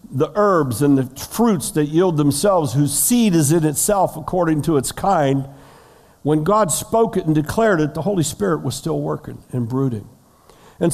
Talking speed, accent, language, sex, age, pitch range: 180 wpm, American, English, male, 50-69, 140-180 Hz